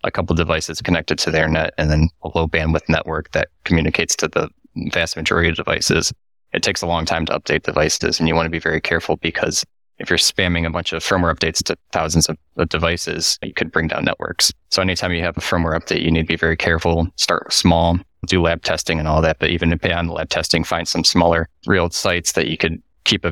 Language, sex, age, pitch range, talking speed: English, male, 20-39, 80-90 Hz, 235 wpm